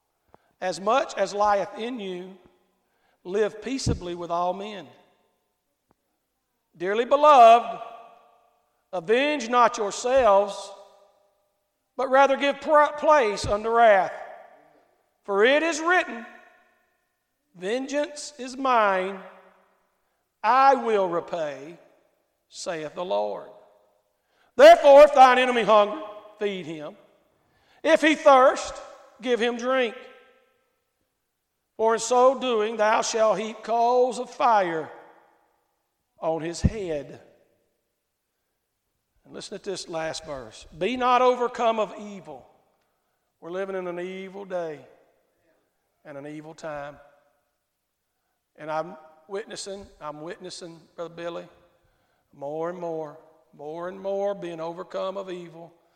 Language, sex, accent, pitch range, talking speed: English, male, American, 180-245 Hz, 105 wpm